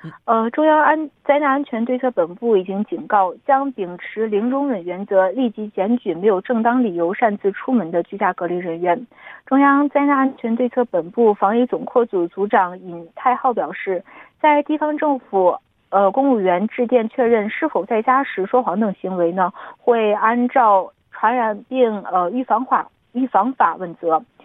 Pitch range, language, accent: 195-255 Hz, Korean, Chinese